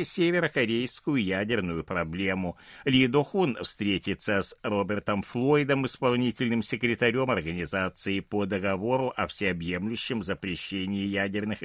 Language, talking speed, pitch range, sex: Russian, 95 wpm, 100-165 Hz, male